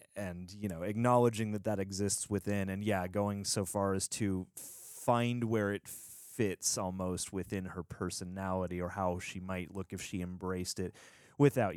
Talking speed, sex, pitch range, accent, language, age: 170 wpm, male, 90-105 Hz, American, English, 30-49